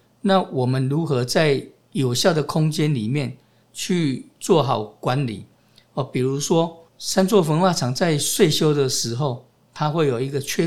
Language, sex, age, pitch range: Chinese, male, 50-69, 125-155 Hz